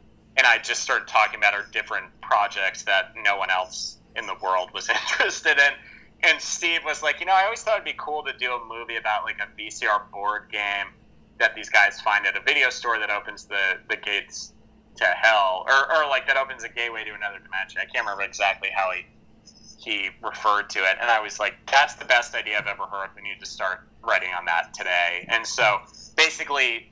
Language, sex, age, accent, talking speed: English, male, 30-49, American, 220 wpm